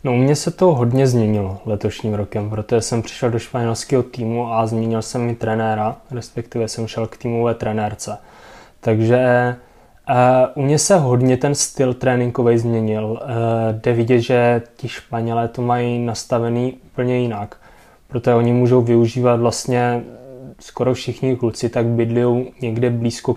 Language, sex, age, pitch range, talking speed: Czech, male, 20-39, 115-130 Hz, 150 wpm